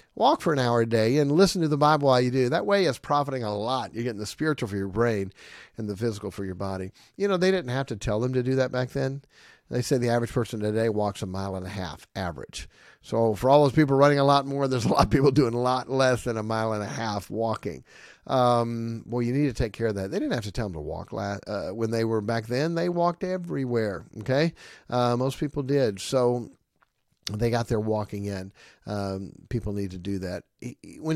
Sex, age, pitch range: male, 40-59, 110-145 Hz